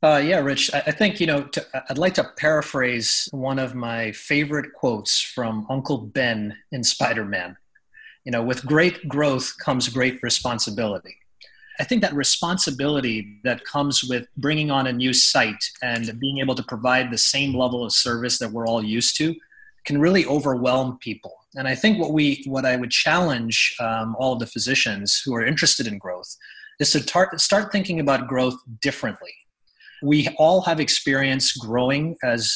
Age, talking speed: 30-49, 175 wpm